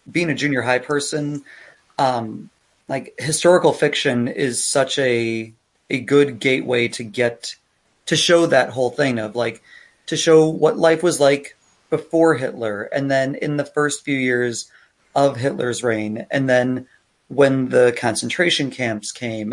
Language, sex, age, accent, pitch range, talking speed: English, male, 30-49, American, 120-145 Hz, 150 wpm